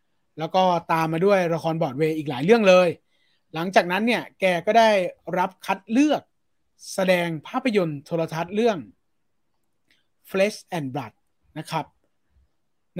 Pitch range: 160-210 Hz